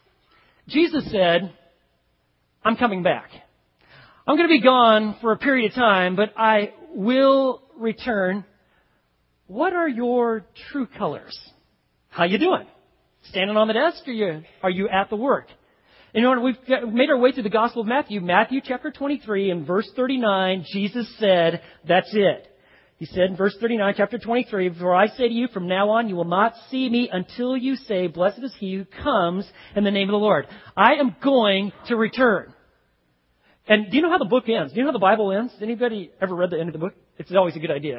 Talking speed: 200 wpm